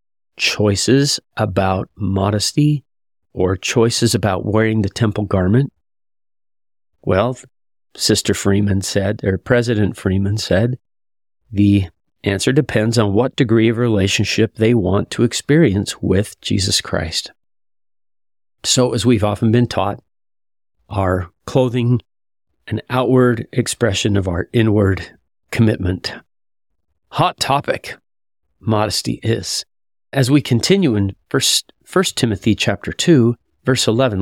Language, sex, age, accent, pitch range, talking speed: English, male, 40-59, American, 95-120 Hz, 110 wpm